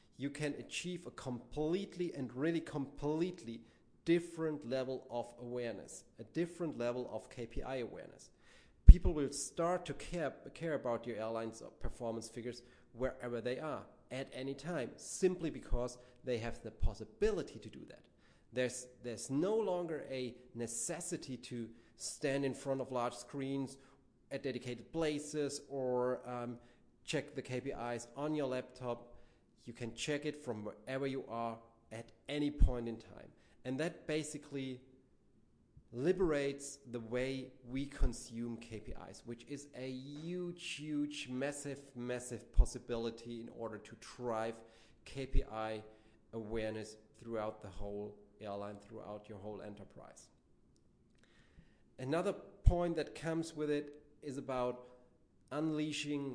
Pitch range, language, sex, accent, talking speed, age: 115-145 Hz, English, male, German, 130 wpm, 30-49